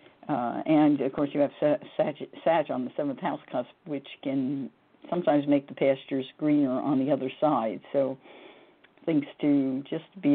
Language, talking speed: English, 175 wpm